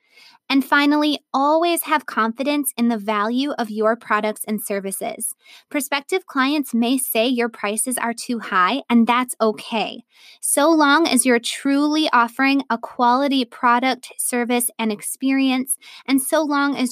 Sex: female